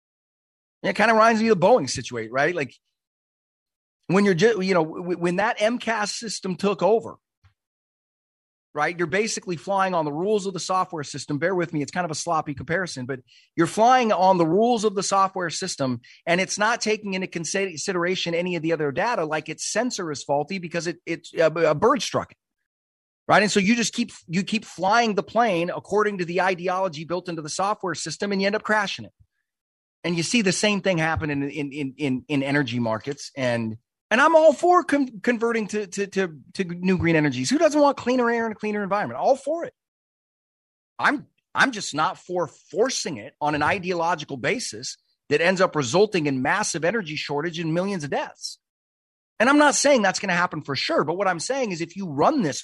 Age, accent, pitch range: 30-49, American, 150-210 Hz